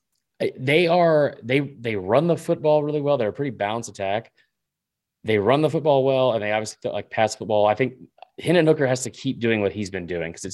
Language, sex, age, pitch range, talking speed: English, male, 20-39, 100-125 Hz, 220 wpm